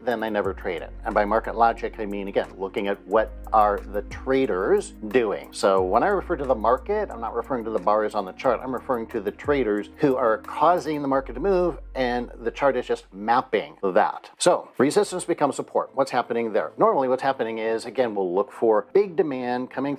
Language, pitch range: English, 115-155 Hz